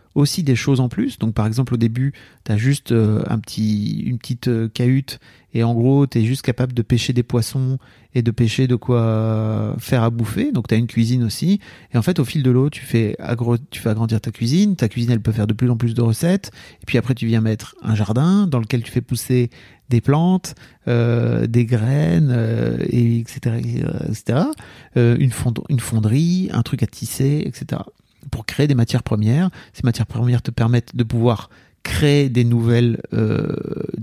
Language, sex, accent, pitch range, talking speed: French, male, French, 115-140 Hz, 205 wpm